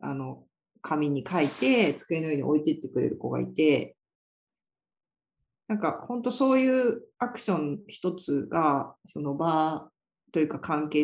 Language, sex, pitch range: Japanese, female, 145-215 Hz